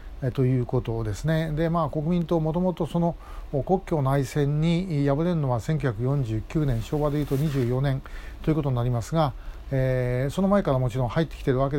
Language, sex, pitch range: Japanese, male, 130-165 Hz